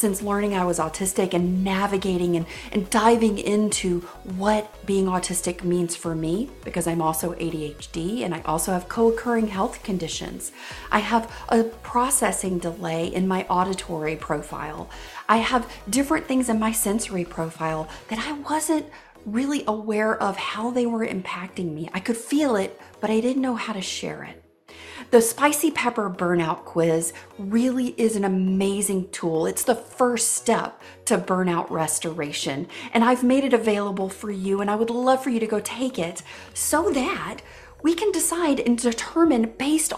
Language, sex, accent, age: English, female, American, 40-59